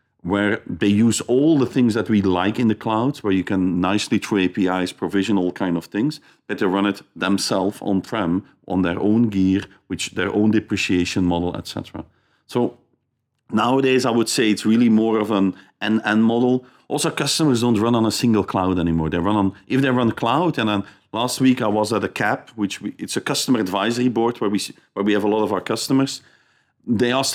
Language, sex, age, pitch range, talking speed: English, male, 40-59, 95-120 Hz, 210 wpm